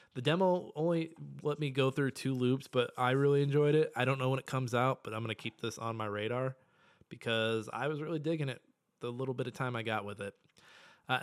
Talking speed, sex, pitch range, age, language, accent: 245 wpm, male, 110-140 Hz, 20-39, English, American